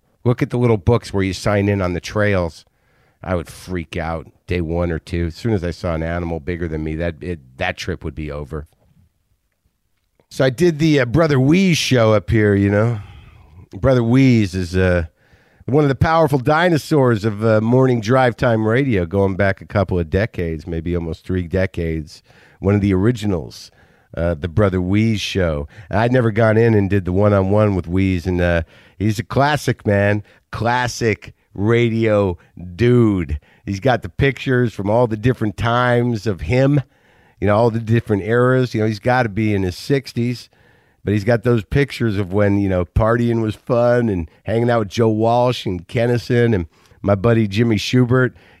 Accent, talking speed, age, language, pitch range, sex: American, 190 wpm, 50-69, English, 90-120 Hz, male